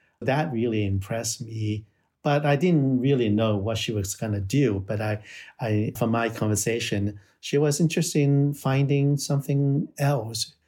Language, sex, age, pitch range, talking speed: English, male, 50-69, 105-130 Hz, 150 wpm